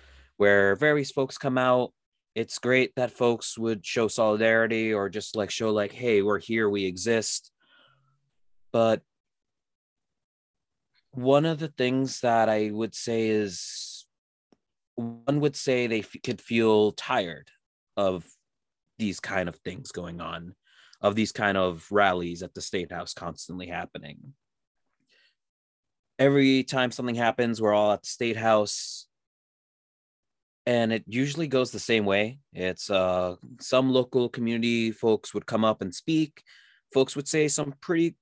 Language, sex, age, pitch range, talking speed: English, male, 30-49, 100-130 Hz, 140 wpm